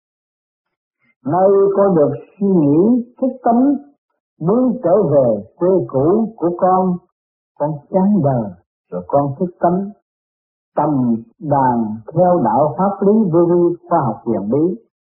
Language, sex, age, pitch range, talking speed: Vietnamese, male, 50-69, 135-190 Hz, 130 wpm